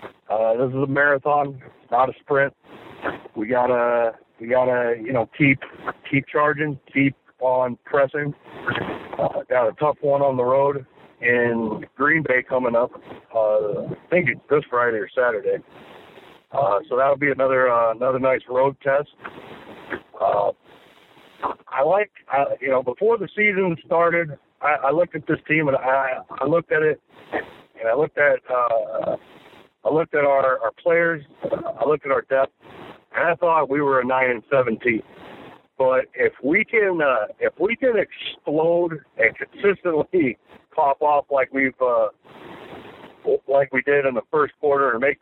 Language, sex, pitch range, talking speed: English, male, 130-180 Hz, 165 wpm